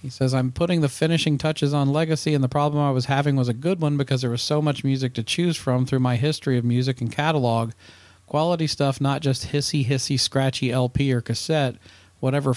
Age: 40-59